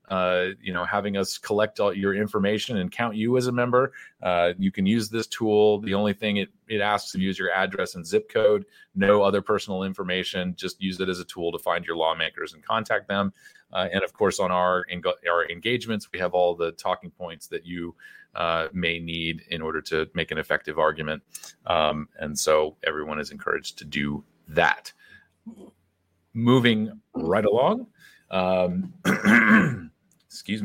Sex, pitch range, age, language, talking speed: male, 95-125 Hz, 30-49, English, 180 wpm